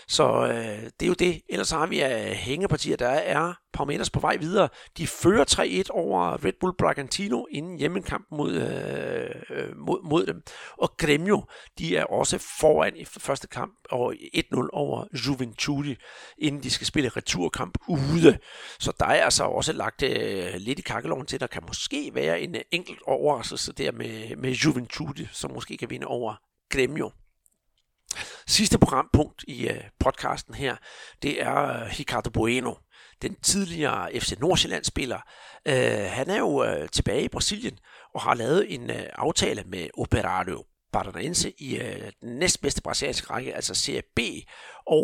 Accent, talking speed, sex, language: native, 155 wpm, male, Danish